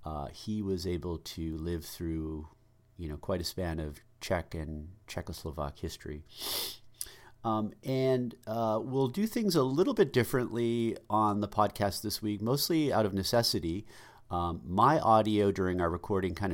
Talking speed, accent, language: 155 wpm, American, English